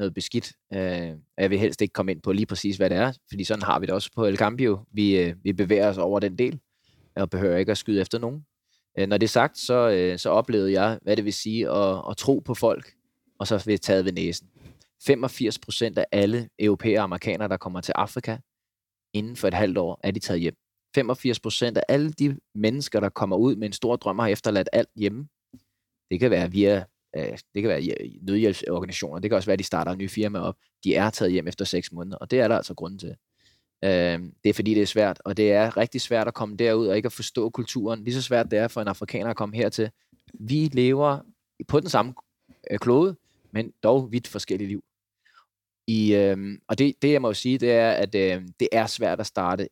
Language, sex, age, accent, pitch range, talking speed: Danish, male, 20-39, native, 100-115 Hz, 225 wpm